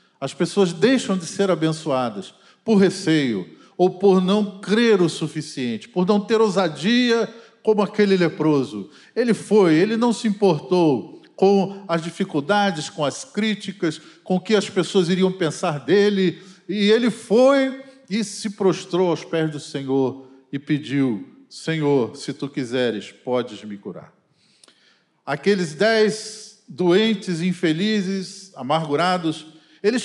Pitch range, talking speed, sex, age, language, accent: 160-210 Hz, 130 wpm, male, 40-59, Portuguese, Brazilian